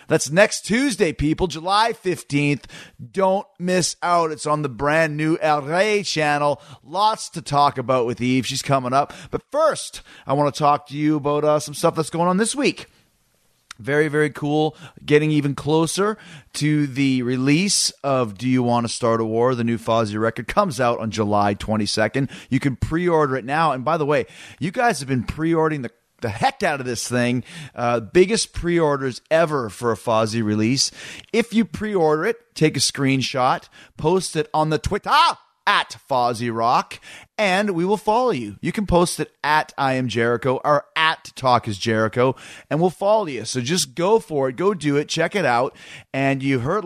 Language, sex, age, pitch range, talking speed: English, male, 30-49, 120-160 Hz, 195 wpm